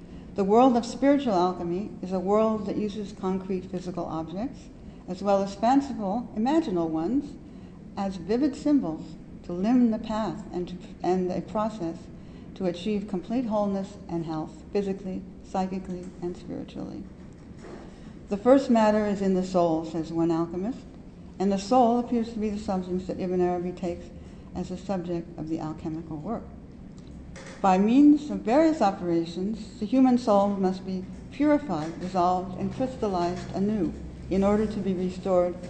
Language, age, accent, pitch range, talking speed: English, 60-79, American, 175-215 Hz, 150 wpm